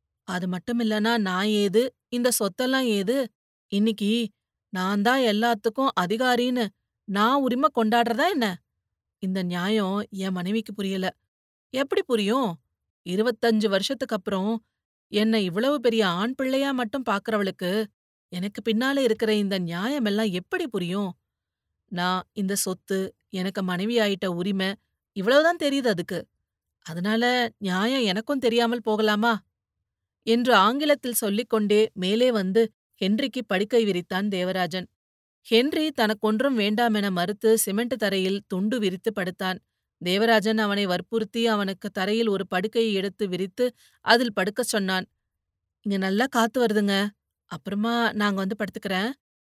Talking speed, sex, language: 115 wpm, female, Tamil